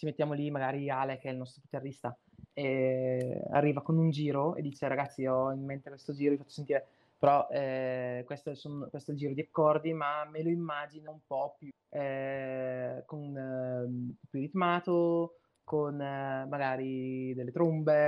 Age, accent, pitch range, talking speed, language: 20-39, native, 125-145 Hz, 180 wpm, Italian